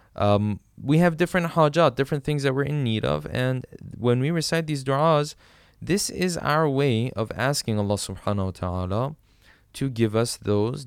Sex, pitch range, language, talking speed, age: male, 110-140 Hz, English, 175 wpm, 20-39